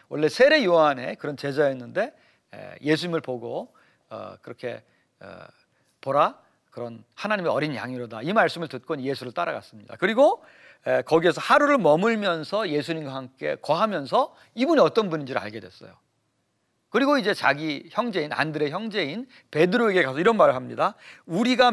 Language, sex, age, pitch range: Korean, male, 40-59, 150-240 Hz